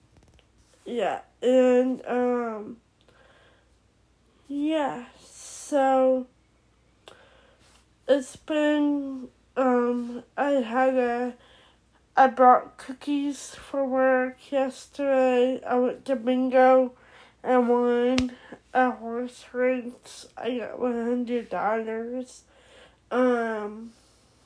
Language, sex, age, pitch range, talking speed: English, female, 10-29, 240-265 Hz, 75 wpm